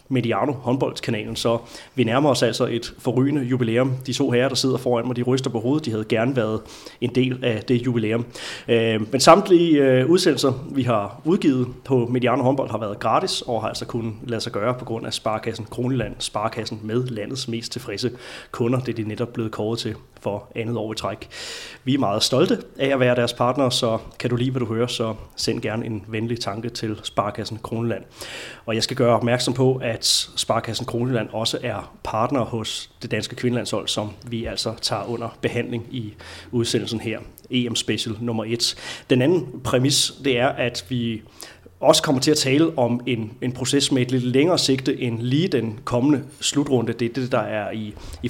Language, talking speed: Danish, 195 wpm